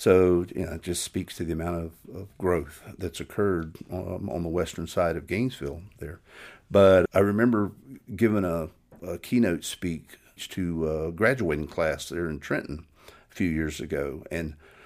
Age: 50-69